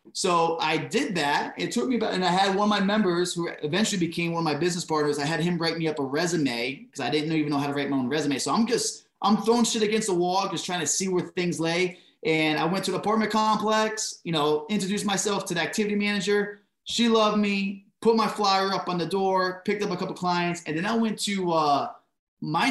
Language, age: English, 20-39